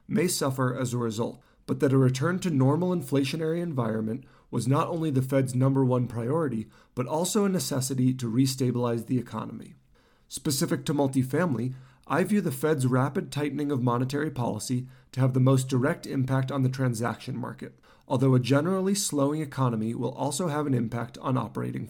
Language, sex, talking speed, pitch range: English, male, 175 wpm, 120-145 Hz